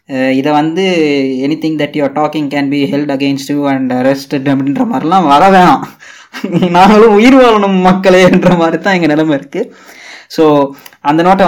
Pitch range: 140-185 Hz